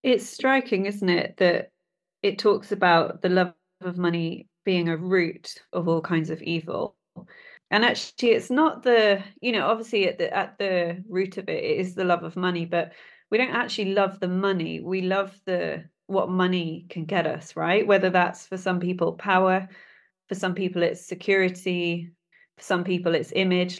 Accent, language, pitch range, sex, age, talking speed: British, English, 170-205 Hz, female, 30-49, 180 wpm